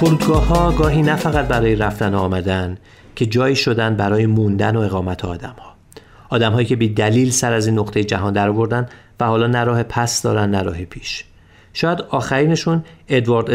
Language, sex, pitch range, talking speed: Persian, male, 105-120 Hz, 160 wpm